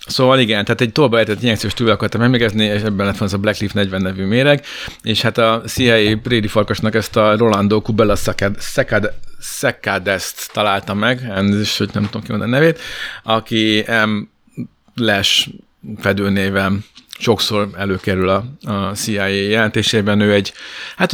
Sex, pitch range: male, 100-115 Hz